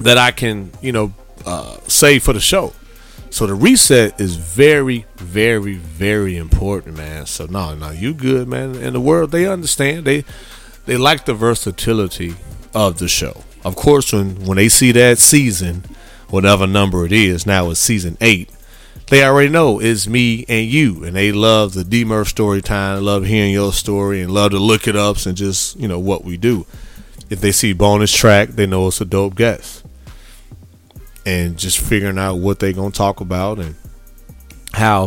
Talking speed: 185 wpm